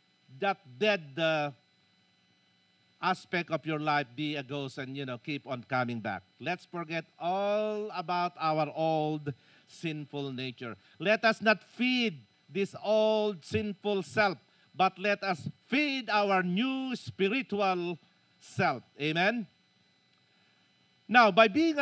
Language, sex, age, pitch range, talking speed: Filipino, male, 50-69, 150-210 Hz, 125 wpm